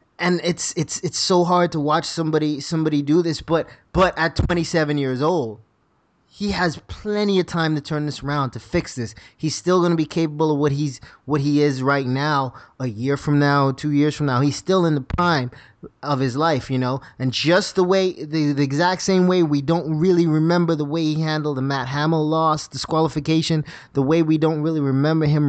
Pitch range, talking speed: 135-165 Hz, 215 wpm